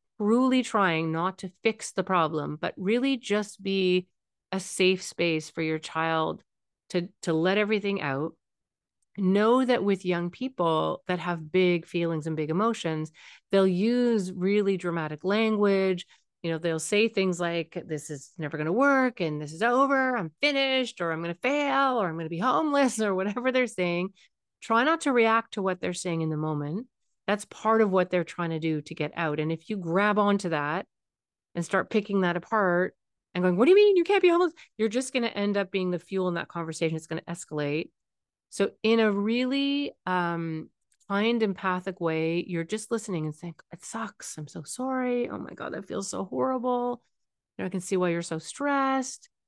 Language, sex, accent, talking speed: English, female, American, 195 wpm